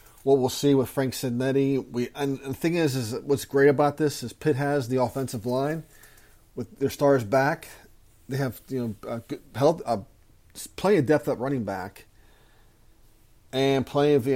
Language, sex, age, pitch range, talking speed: English, male, 40-59, 115-145 Hz, 190 wpm